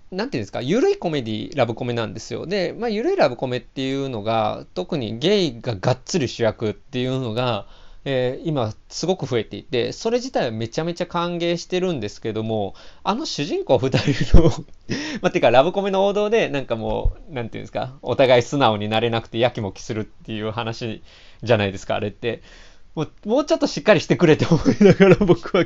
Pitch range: 110-185 Hz